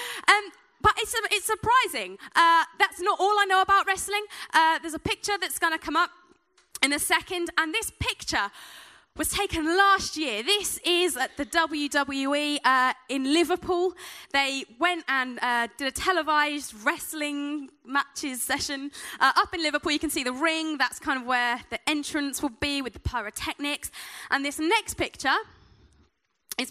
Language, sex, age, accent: English, female, 20-39, British